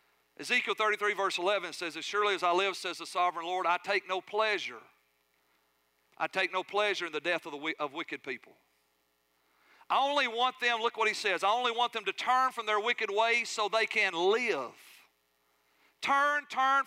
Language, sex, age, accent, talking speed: English, male, 40-59, American, 190 wpm